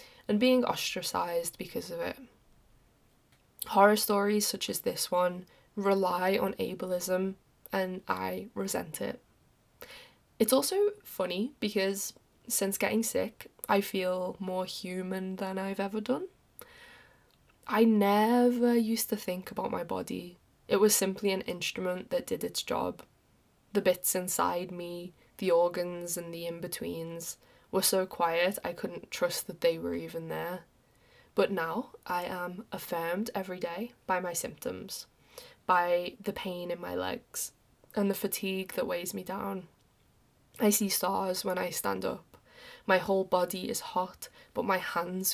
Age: 10-29